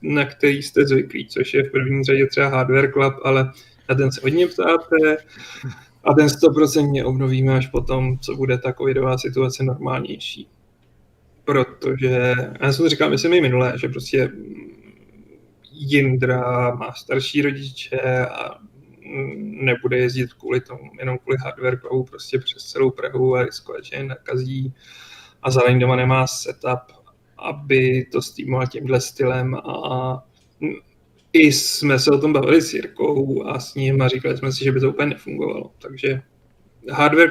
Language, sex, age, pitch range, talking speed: Czech, male, 30-49, 130-140 Hz, 155 wpm